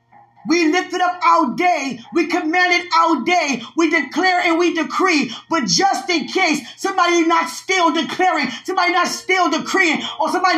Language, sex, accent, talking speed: English, female, American, 170 wpm